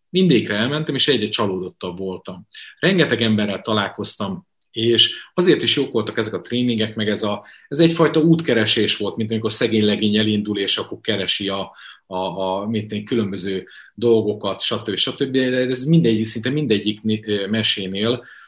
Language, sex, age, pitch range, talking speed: Hungarian, male, 30-49, 105-130 Hz, 145 wpm